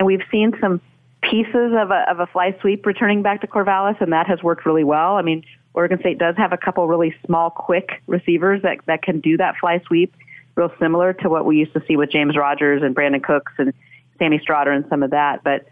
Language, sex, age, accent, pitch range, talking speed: English, female, 40-59, American, 145-180 Hz, 235 wpm